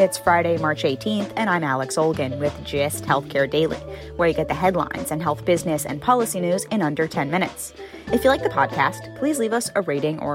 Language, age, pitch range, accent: English, 10-29, 160-210 Hz, American